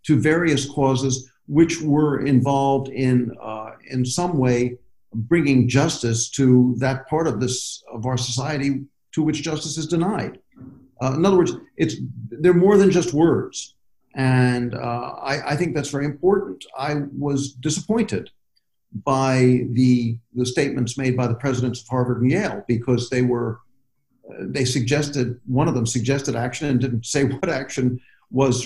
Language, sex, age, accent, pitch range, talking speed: English, male, 50-69, American, 120-145 Hz, 160 wpm